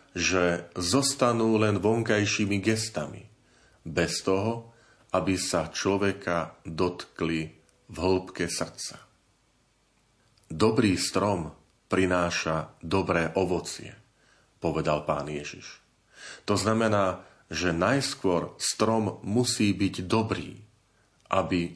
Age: 40-59